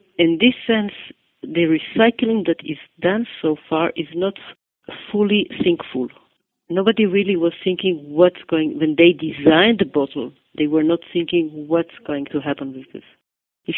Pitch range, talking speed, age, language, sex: 150-195 Hz, 155 wpm, 50-69, English, female